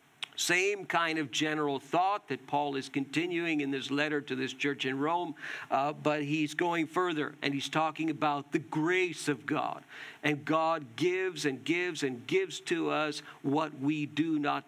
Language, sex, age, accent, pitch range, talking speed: English, male, 50-69, American, 145-180 Hz, 175 wpm